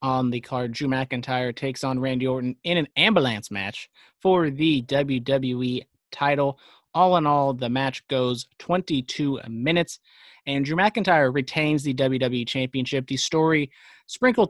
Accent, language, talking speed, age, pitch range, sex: American, English, 145 wpm, 30-49, 125-155 Hz, male